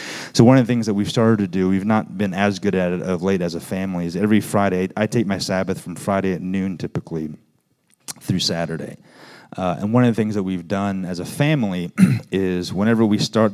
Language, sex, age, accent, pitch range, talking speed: English, male, 30-49, American, 90-115 Hz, 230 wpm